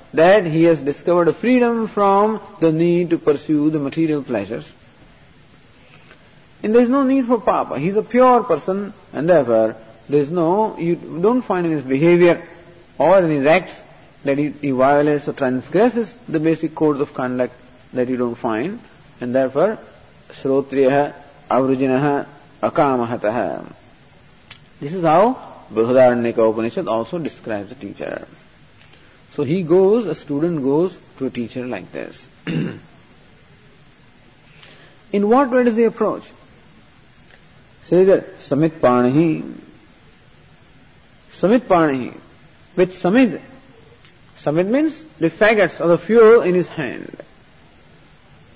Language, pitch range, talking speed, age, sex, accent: English, 140-210 Hz, 130 wpm, 50-69, male, Indian